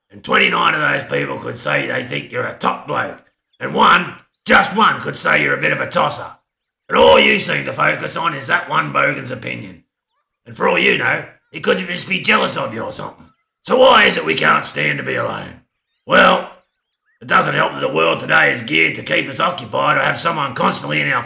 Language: English